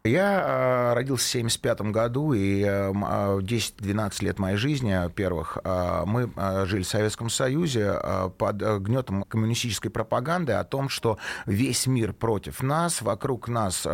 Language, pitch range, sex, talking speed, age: Russian, 95-120 Hz, male, 120 wpm, 30-49